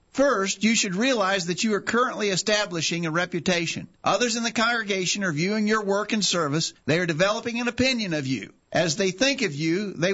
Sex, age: male, 50-69